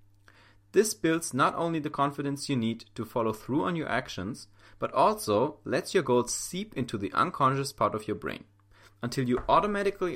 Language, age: English, 30-49